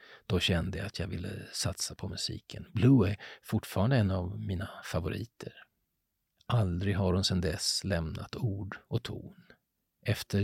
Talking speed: 150 wpm